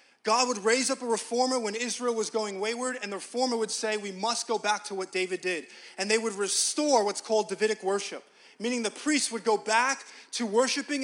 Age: 20-39